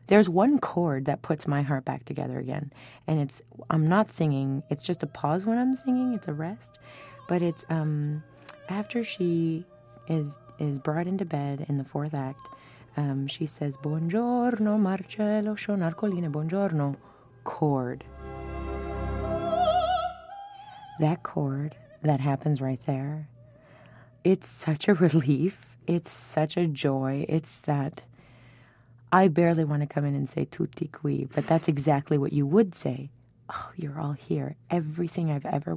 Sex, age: female, 20-39